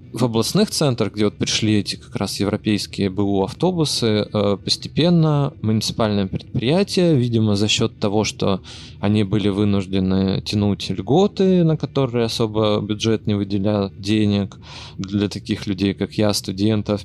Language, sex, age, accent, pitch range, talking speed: Russian, male, 20-39, native, 100-120 Hz, 130 wpm